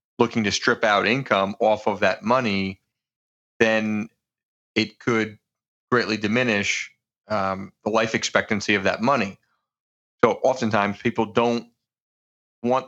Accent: American